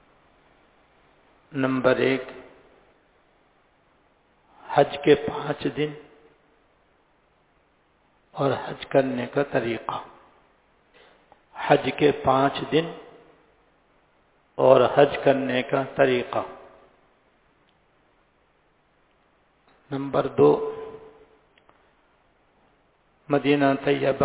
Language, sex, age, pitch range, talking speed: English, male, 60-79, 130-145 Hz, 55 wpm